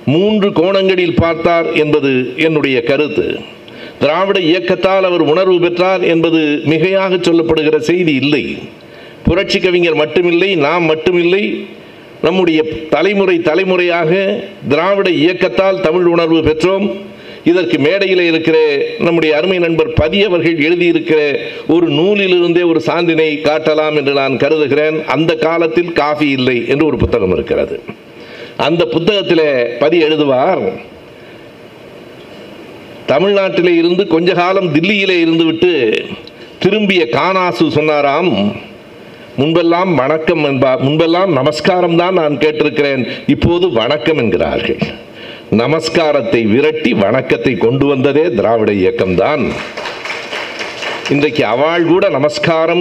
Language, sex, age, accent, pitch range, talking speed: Tamil, male, 60-79, native, 150-185 Hz, 100 wpm